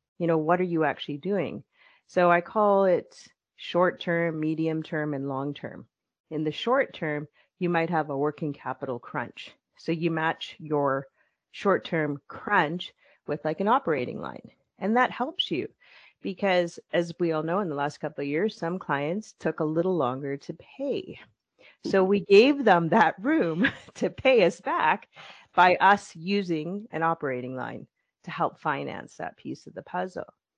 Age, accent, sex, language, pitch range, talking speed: 30-49, American, female, English, 150-190 Hz, 175 wpm